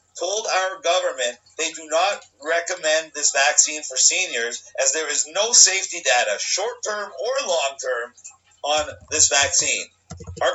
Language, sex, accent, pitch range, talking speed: English, male, American, 140-185 Hz, 135 wpm